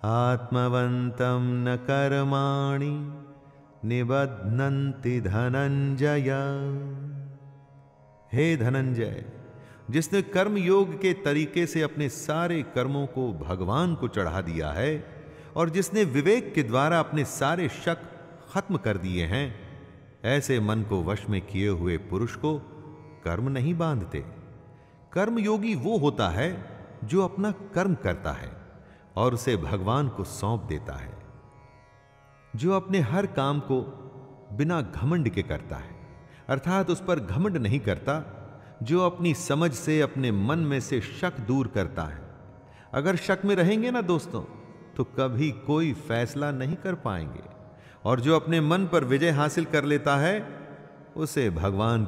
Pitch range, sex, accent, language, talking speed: 115-160 Hz, male, native, Hindi, 130 wpm